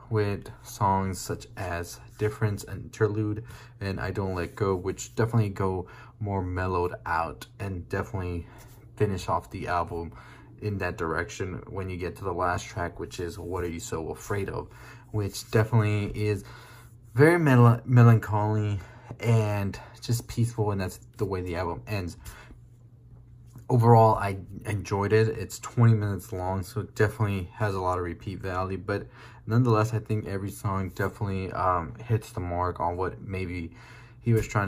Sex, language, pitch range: male, English, 95-115 Hz